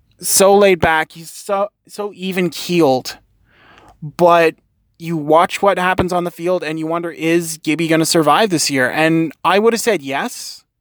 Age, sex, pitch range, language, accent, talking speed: 20-39, male, 160-185 Hz, English, American, 180 wpm